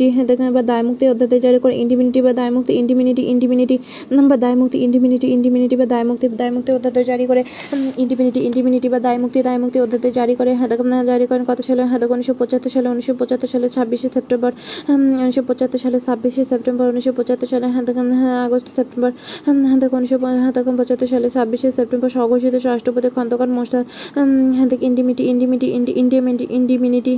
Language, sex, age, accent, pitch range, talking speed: Bengali, female, 20-39, native, 245-255 Hz, 115 wpm